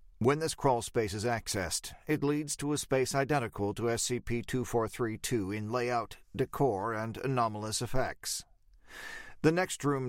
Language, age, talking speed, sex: English, 50-69, 135 wpm, male